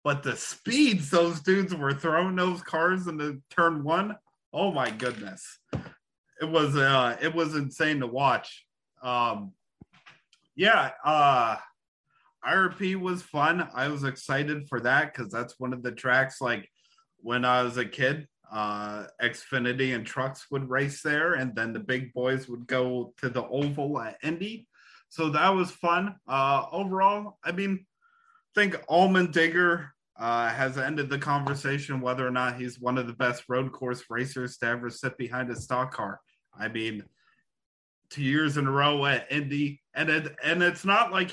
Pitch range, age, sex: 125-165 Hz, 20-39, male